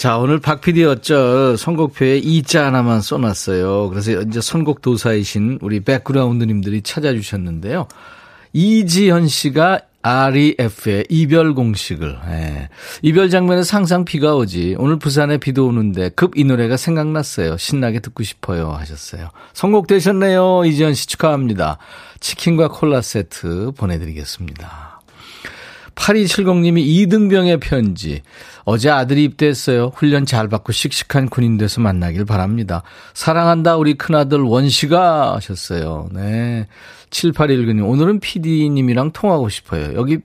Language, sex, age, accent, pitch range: Korean, male, 40-59, native, 110-160 Hz